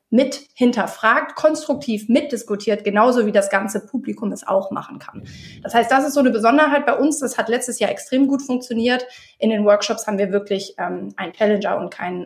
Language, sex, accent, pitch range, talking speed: German, female, German, 205-245 Hz, 195 wpm